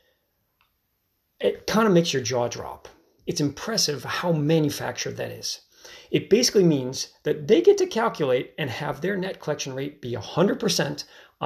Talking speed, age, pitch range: 150 wpm, 30-49, 130-190 Hz